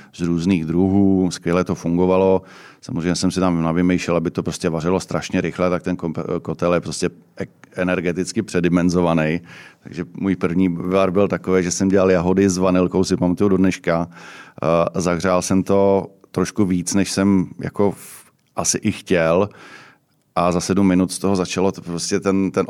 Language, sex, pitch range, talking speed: Czech, male, 85-95 Hz, 165 wpm